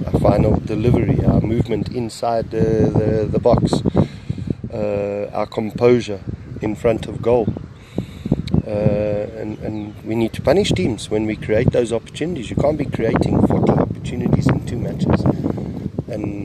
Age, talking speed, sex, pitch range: 30-49, 140 wpm, male, 100-125 Hz